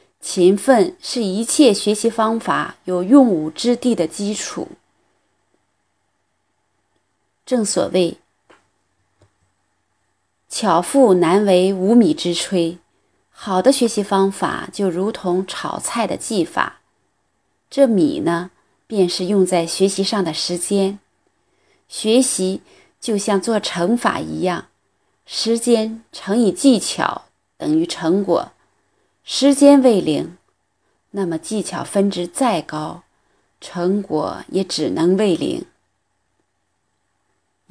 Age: 30-49